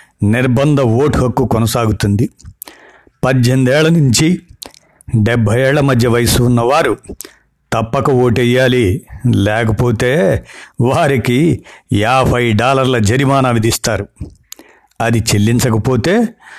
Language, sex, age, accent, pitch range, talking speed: Telugu, male, 60-79, native, 115-140 Hz, 80 wpm